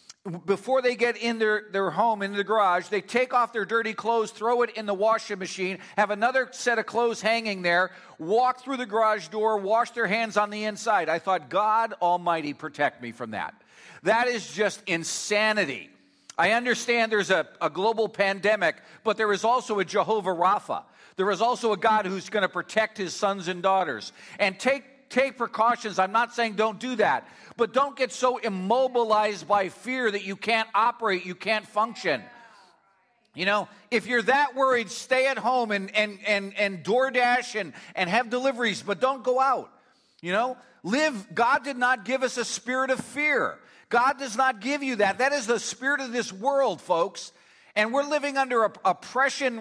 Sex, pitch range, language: male, 205-250 Hz, English